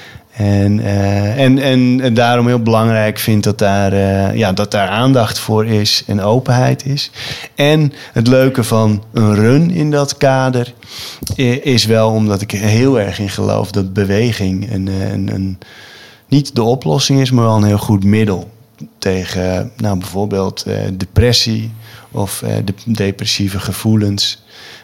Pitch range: 100-115 Hz